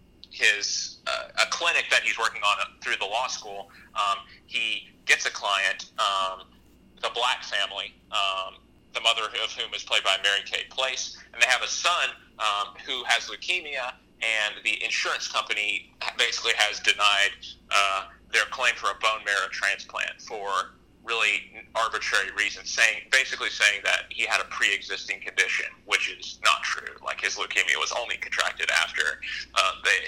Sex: male